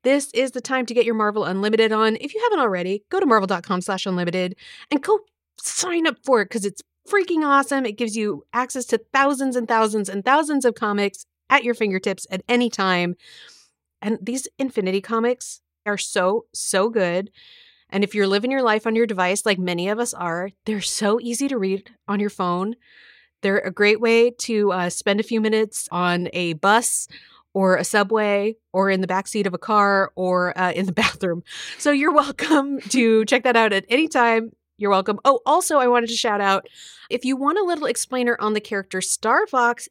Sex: female